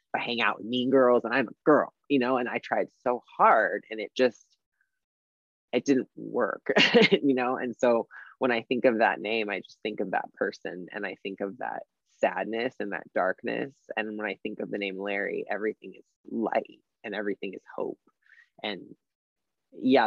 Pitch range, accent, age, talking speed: 105-120 Hz, American, 20-39, 195 wpm